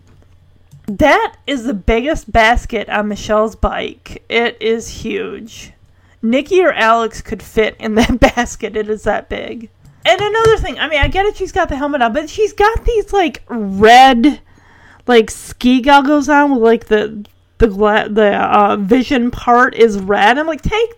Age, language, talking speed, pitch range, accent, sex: 30-49, English, 170 wpm, 215-300 Hz, American, female